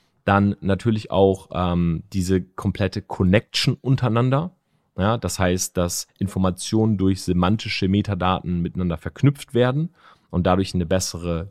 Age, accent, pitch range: 30-49, German, 90-115 Hz